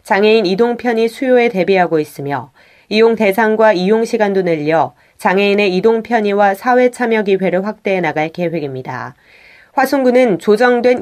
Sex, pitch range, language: female, 175-225 Hz, Korean